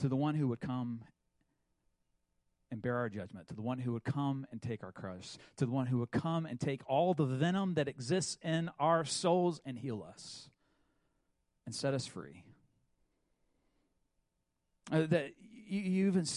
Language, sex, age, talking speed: English, male, 40-59, 175 wpm